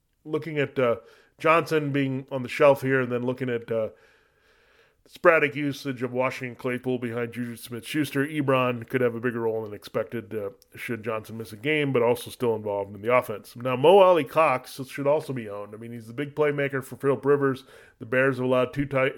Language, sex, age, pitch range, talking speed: English, male, 30-49, 115-140 Hz, 205 wpm